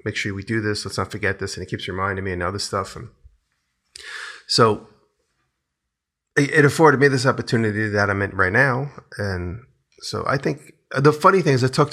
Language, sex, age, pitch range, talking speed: English, male, 30-49, 100-125 Hz, 195 wpm